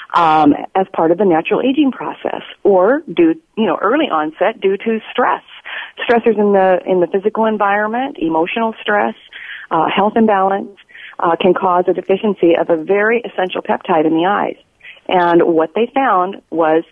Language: English